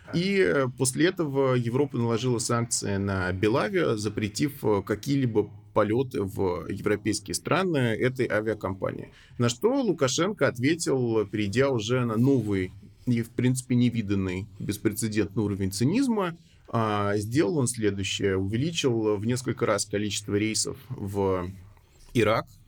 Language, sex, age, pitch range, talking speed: Russian, male, 20-39, 105-130 Hz, 110 wpm